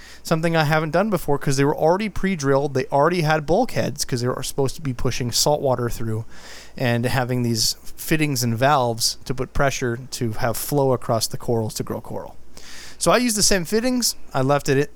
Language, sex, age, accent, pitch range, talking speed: English, male, 30-49, American, 130-180 Hz, 210 wpm